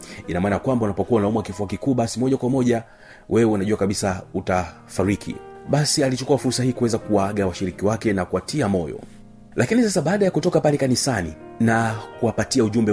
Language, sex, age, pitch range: Swahili, male, 40-59, 95-125 Hz